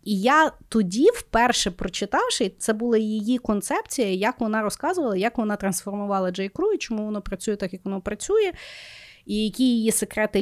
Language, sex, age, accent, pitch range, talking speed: Ukrainian, female, 30-49, native, 200-270 Hz, 160 wpm